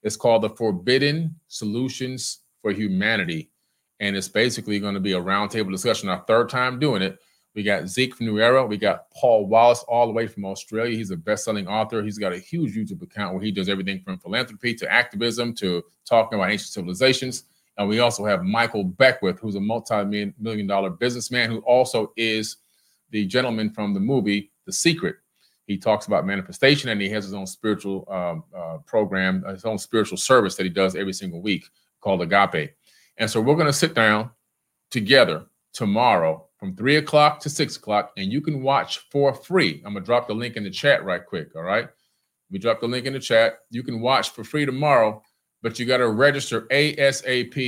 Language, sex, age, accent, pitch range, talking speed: English, male, 30-49, American, 100-135 Hz, 195 wpm